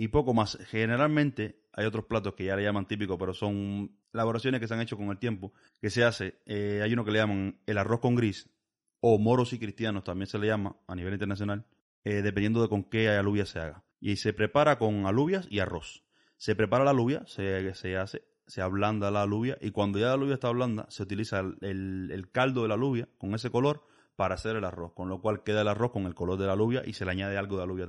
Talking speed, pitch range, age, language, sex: 245 wpm, 95-120 Hz, 30-49, Spanish, male